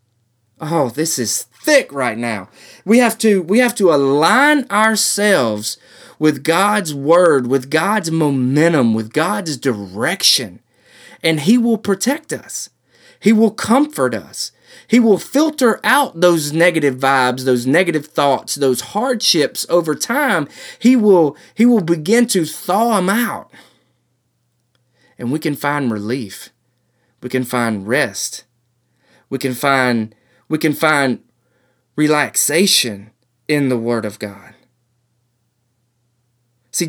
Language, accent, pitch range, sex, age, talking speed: English, American, 125-190 Hz, male, 30-49, 125 wpm